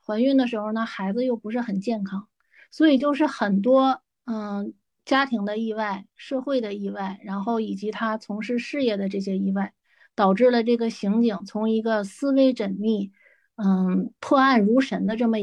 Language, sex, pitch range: Chinese, female, 205-255 Hz